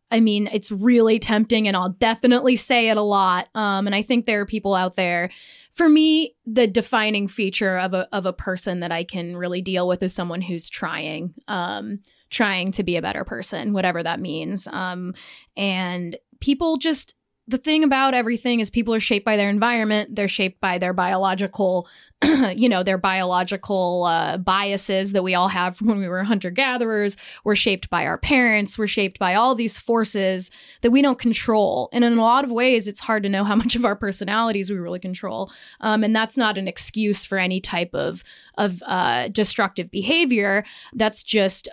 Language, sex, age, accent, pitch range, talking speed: English, female, 10-29, American, 185-225 Hz, 195 wpm